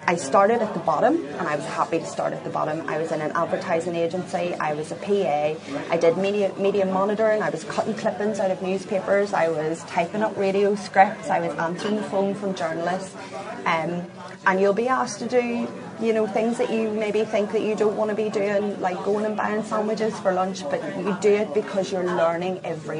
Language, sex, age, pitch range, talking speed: English, female, 30-49, 170-200 Hz, 220 wpm